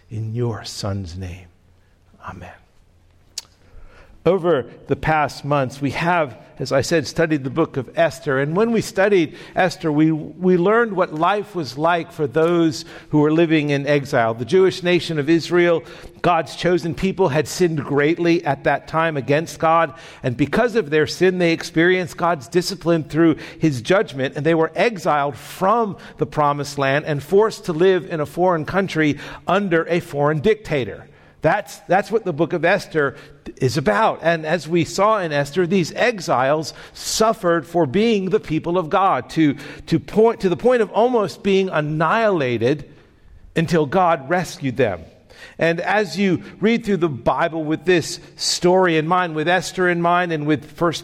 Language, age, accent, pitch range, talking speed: English, 50-69, American, 145-185 Hz, 165 wpm